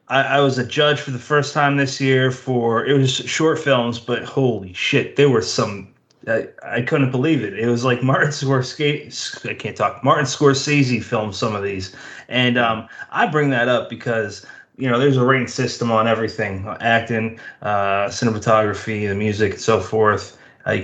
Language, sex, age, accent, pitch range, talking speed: English, male, 30-49, American, 110-135 Hz, 185 wpm